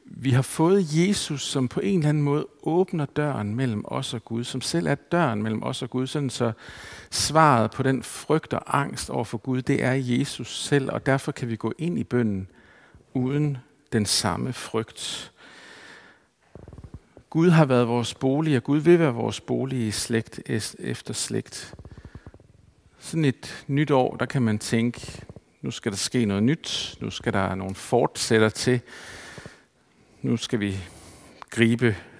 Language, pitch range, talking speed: Danish, 110-140 Hz, 165 wpm